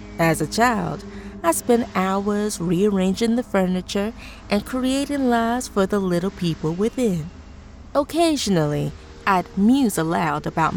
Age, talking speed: 20-39, 125 wpm